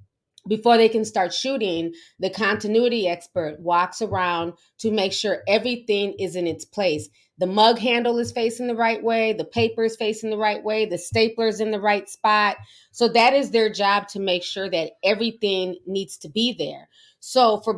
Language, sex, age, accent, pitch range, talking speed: English, female, 30-49, American, 180-225 Hz, 185 wpm